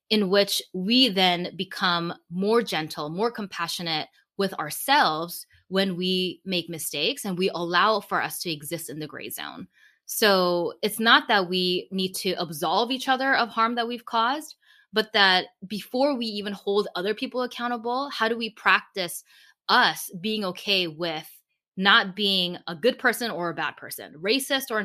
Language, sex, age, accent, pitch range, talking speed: English, female, 20-39, American, 170-230 Hz, 165 wpm